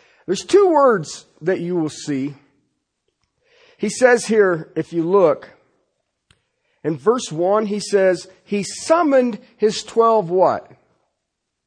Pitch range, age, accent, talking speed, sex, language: 180-280 Hz, 50-69, American, 120 wpm, male, English